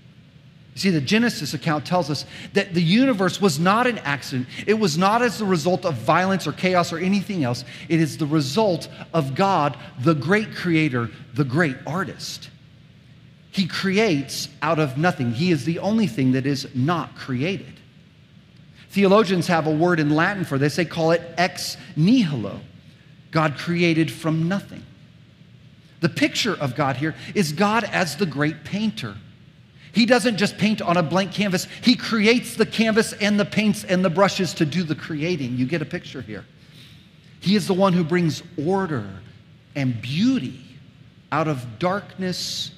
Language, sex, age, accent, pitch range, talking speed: English, male, 40-59, American, 145-190 Hz, 165 wpm